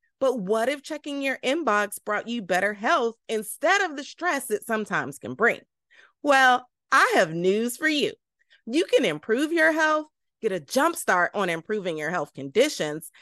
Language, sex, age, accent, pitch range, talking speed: English, female, 30-49, American, 200-300 Hz, 170 wpm